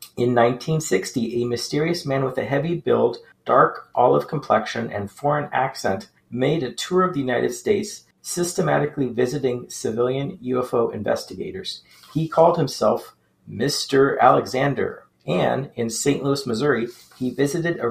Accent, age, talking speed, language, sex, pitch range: American, 40-59, 135 wpm, English, male, 120-150 Hz